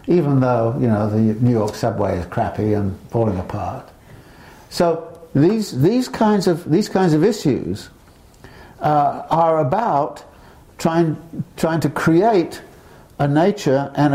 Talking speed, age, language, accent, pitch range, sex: 135 wpm, 60-79, English, British, 130-165 Hz, male